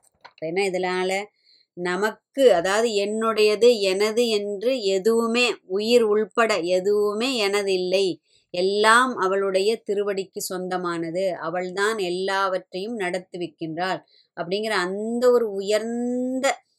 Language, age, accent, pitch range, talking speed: Tamil, 20-39, native, 180-220 Hz, 80 wpm